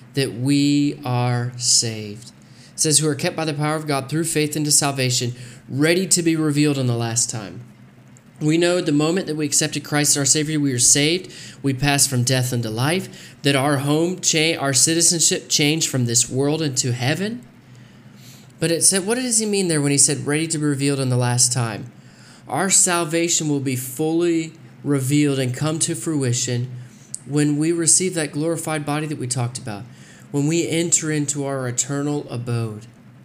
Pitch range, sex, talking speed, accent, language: 125-155 Hz, male, 190 wpm, American, English